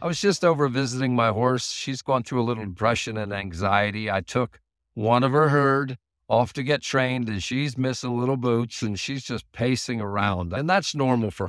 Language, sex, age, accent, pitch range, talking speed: English, male, 50-69, American, 100-135 Hz, 205 wpm